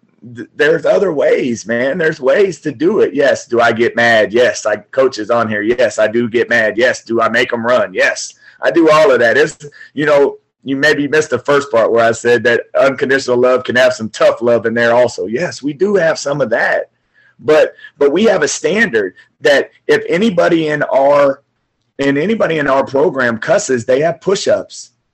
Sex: male